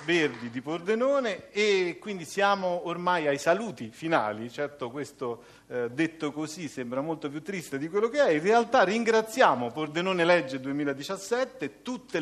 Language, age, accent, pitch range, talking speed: Italian, 50-69, native, 145-210 Hz, 145 wpm